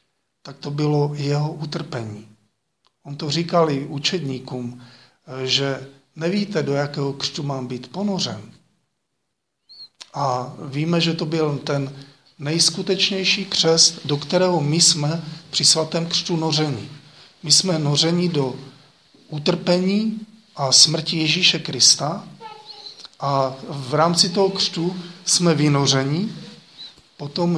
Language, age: Slovak, 40-59